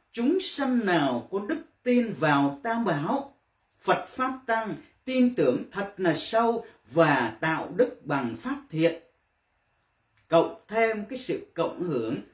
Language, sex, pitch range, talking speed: Vietnamese, male, 150-225 Hz, 140 wpm